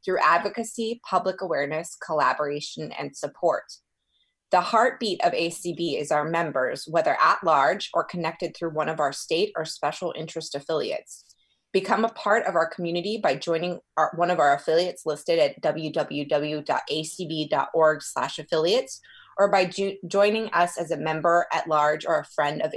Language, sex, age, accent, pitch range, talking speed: English, female, 20-39, American, 155-200 Hz, 150 wpm